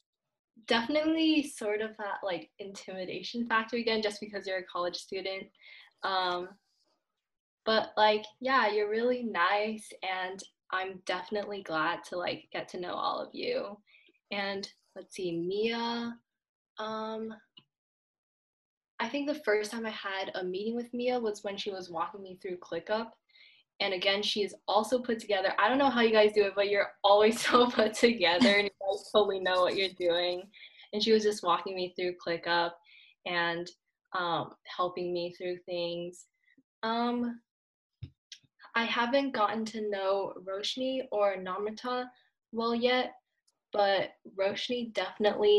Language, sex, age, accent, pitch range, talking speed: English, female, 10-29, American, 185-230 Hz, 150 wpm